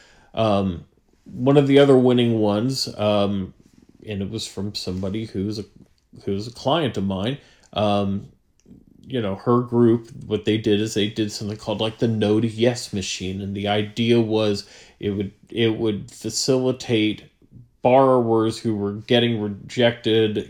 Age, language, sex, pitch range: 30-49, English, male, 105-125 Hz